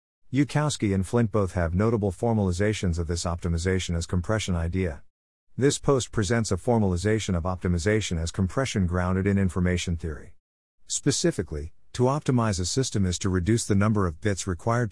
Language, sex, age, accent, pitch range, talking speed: English, male, 50-69, American, 90-120 Hz, 155 wpm